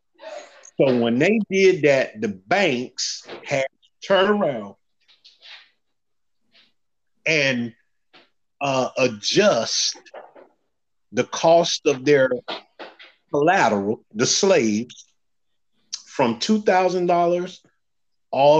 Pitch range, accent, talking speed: 130-185 Hz, American, 85 wpm